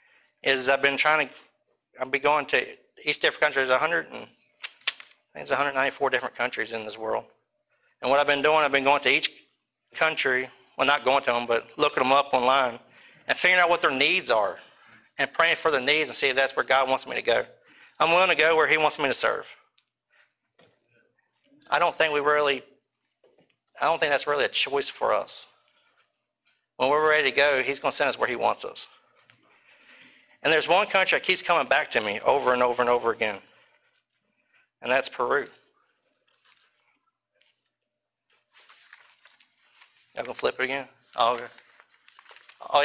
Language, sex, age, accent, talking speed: English, male, 50-69, American, 180 wpm